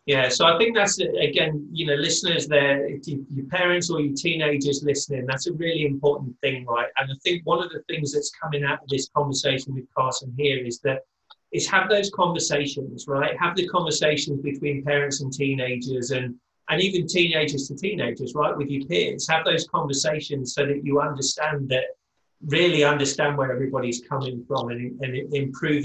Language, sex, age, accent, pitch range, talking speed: English, male, 30-49, British, 135-150 Hz, 185 wpm